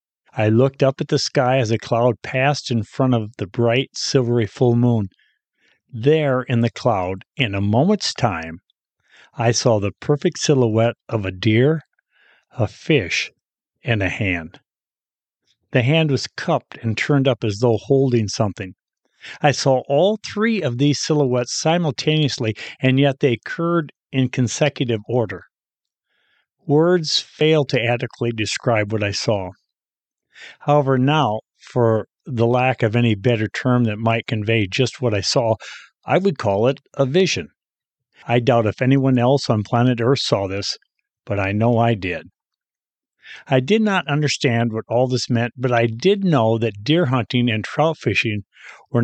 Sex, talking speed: male, 160 wpm